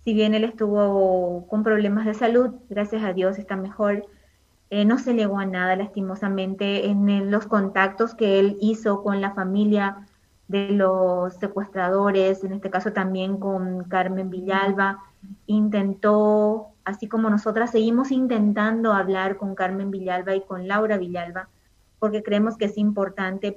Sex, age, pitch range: female, 20-39, 195-215 Hz